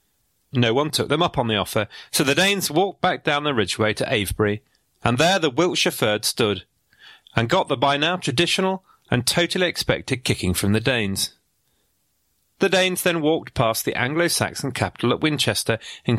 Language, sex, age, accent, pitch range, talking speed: English, male, 40-59, British, 105-155 Hz, 175 wpm